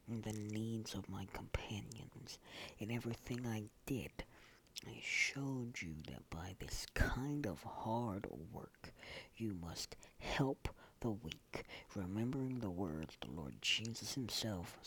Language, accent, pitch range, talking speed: English, American, 90-120 Hz, 125 wpm